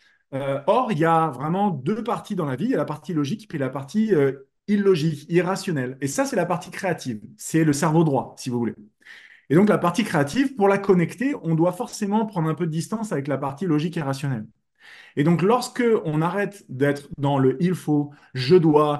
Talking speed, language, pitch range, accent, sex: 225 wpm, French, 150-200 Hz, French, male